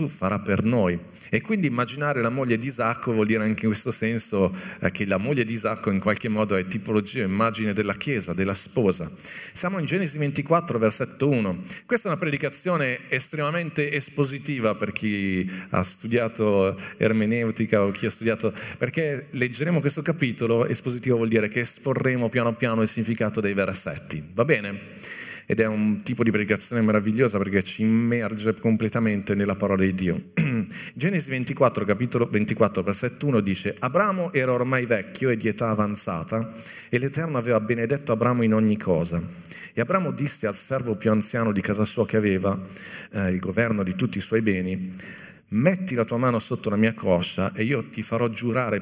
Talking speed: 170 wpm